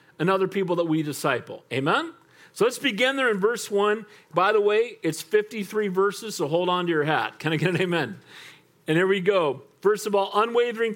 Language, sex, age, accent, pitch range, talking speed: English, male, 40-59, American, 160-245 Hz, 215 wpm